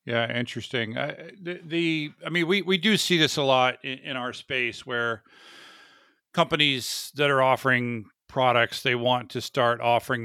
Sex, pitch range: male, 105-135 Hz